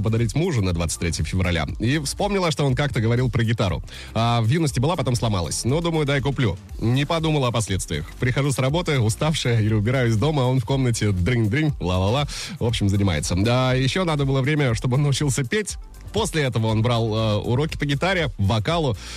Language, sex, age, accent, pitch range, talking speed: Russian, male, 30-49, native, 105-145 Hz, 190 wpm